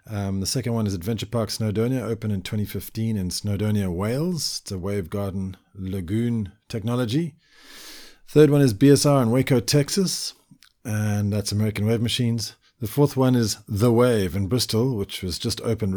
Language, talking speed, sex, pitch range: English, 165 wpm, male, 105-125 Hz